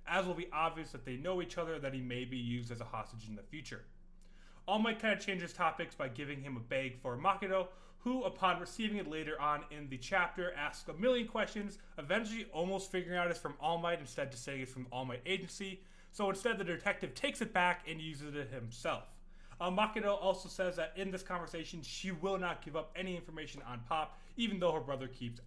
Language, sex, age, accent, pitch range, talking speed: English, male, 30-49, American, 135-195 Hz, 225 wpm